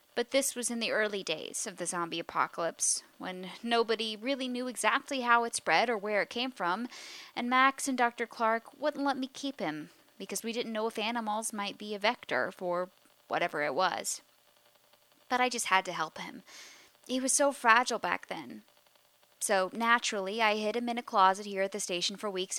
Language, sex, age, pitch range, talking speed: English, female, 10-29, 190-255 Hz, 200 wpm